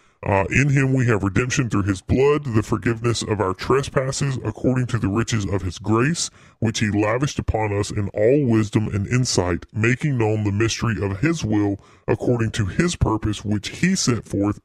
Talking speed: 190 wpm